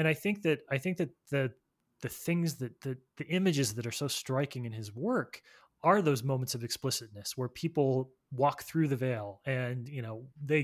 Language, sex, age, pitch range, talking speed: English, male, 20-39, 125-155 Hz, 205 wpm